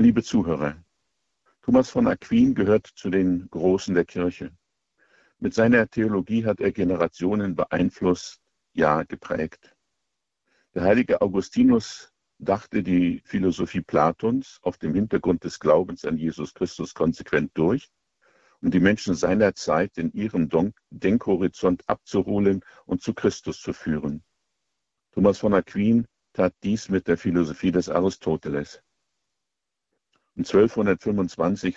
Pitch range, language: 80-100 Hz, German